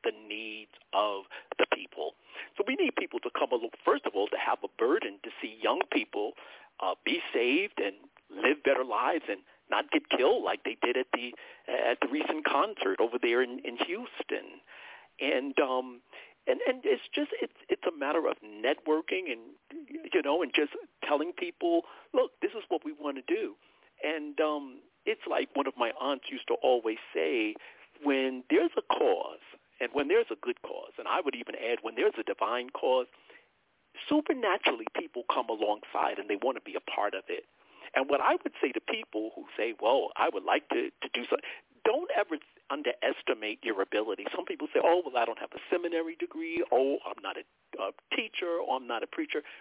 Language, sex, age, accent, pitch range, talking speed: English, male, 50-69, American, 285-450 Hz, 200 wpm